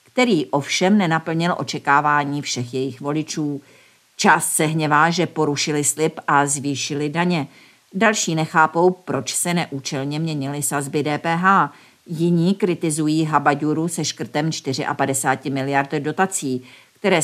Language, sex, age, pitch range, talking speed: Czech, female, 50-69, 140-165 Hz, 115 wpm